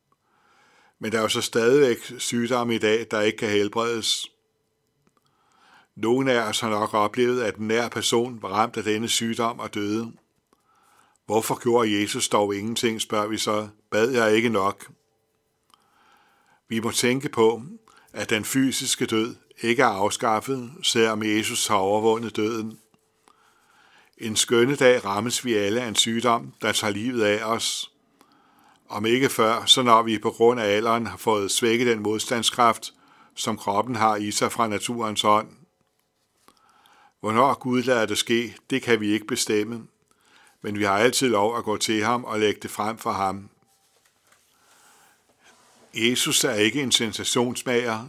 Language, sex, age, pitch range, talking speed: Danish, male, 60-79, 105-120 Hz, 155 wpm